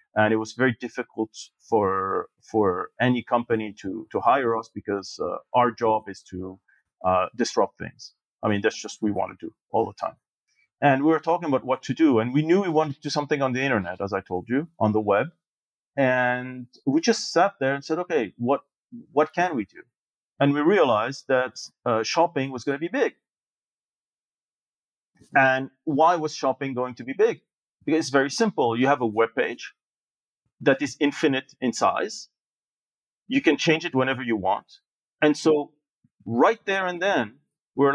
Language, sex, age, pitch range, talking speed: English, male, 40-59, 120-165 Hz, 190 wpm